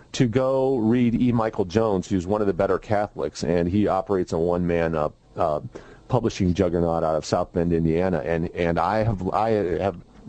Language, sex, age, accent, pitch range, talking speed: English, male, 40-59, American, 95-120 Hz, 190 wpm